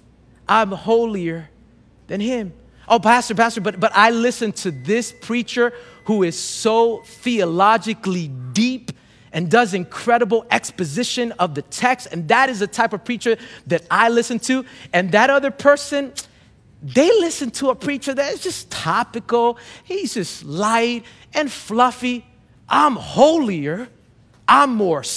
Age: 30-49